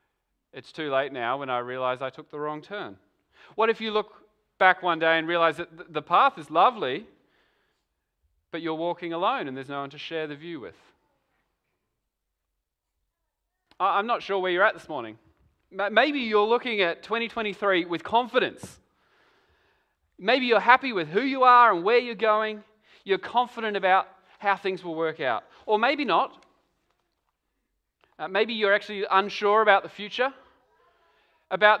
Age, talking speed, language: 30-49, 160 wpm, English